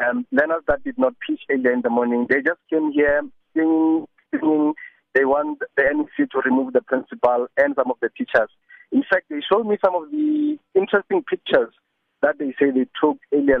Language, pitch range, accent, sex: English, 125-215 Hz, South African, male